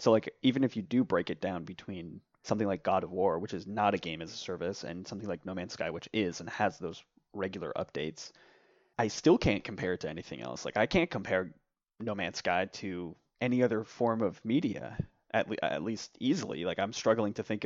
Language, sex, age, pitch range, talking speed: English, male, 20-39, 100-115 Hz, 225 wpm